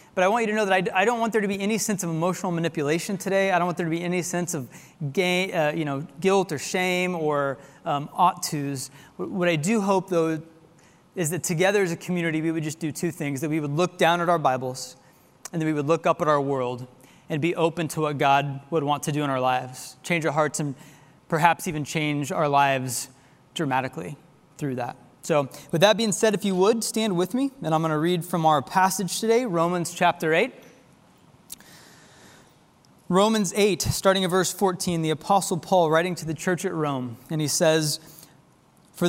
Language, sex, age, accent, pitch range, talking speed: English, male, 20-39, American, 150-190 Hz, 210 wpm